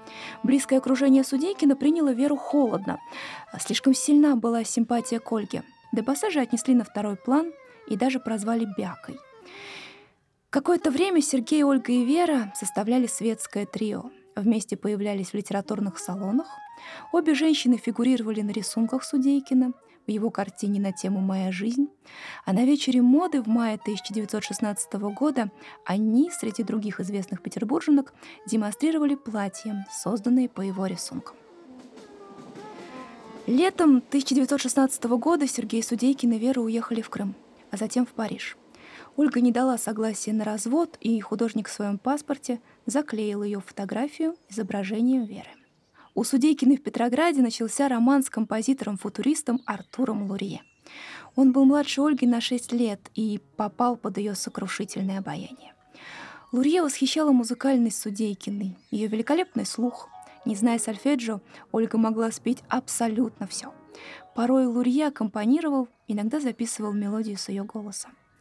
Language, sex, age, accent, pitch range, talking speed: Russian, female, 20-39, native, 215-270 Hz, 125 wpm